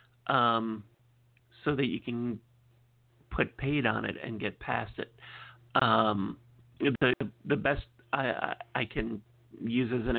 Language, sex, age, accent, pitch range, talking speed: English, male, 50-69, American, 115-125 Hz, 135 wpm